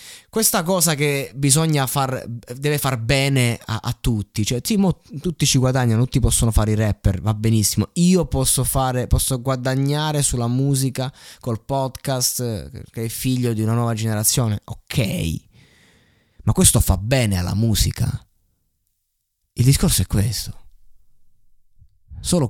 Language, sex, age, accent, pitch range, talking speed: Italian, male, 20-39, native, 105-135 Hz, 130 wpm